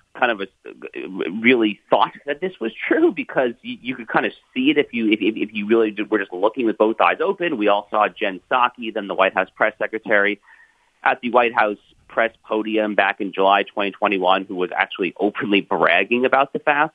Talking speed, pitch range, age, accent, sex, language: 205 wpm, 105-145 Hz, 40-59, American, male, English